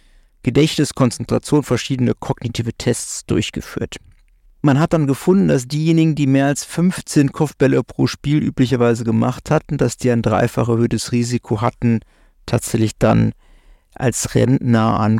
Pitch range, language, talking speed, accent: 115-145 Hz, German, 130 wpm, German